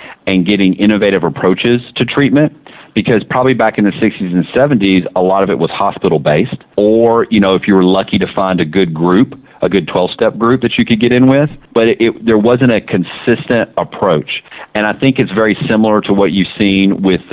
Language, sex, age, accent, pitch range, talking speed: English, male, 40-59, American, 95-115 Hz, 210 wpm